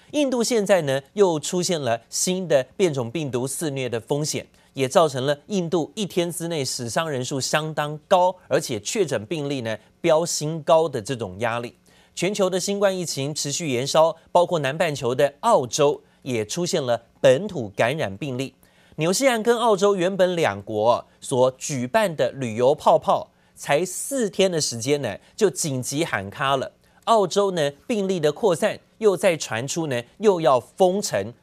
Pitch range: 135-185 Hz